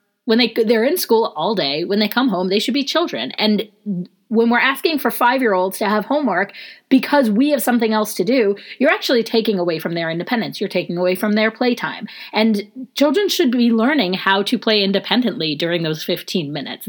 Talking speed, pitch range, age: 205 wpm, 185-245 Hz, 30-49